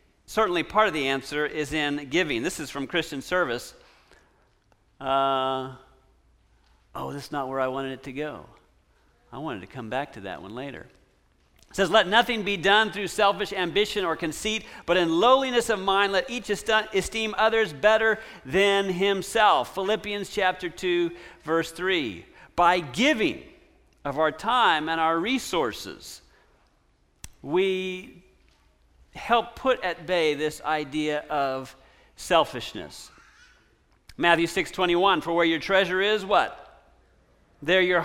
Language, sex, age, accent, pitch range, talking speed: English, male, 50-69, American, 150-210 Hz, 140 wpm